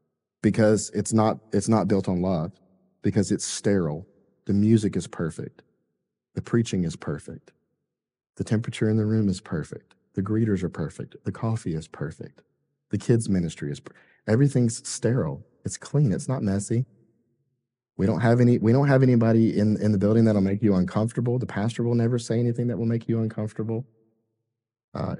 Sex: male